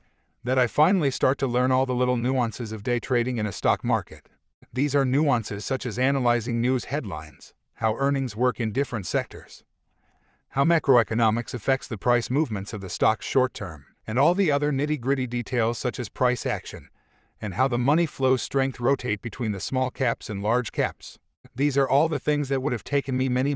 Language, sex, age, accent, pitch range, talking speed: English, male, 50-69, American, 110-135 Hz, 195 wpm